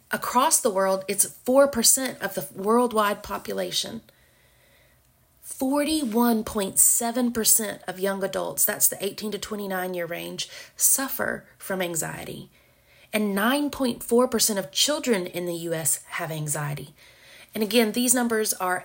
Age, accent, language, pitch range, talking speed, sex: 30-49, American, English, 185-220 Hz, 120 wpm, female